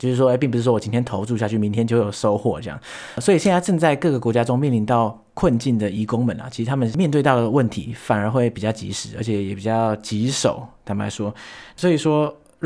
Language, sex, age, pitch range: Chinese, male, 20-39, 105-130 Hz